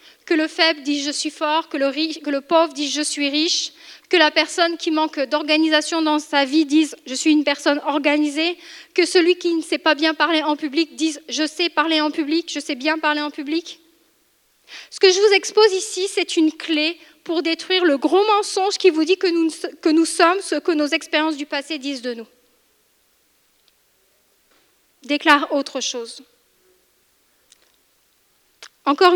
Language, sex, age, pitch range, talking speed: French, female, 30-49, 300-350 Hz, 175 wpm